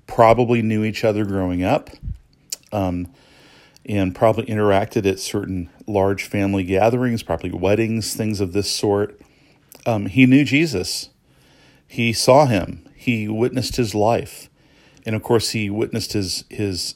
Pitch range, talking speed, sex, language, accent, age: 95-120 Hz, 140 wpm, male, English, American, 40-59